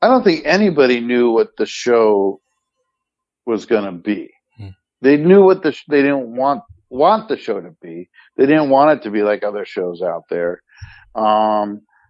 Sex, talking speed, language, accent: male, 185 wpm, English, American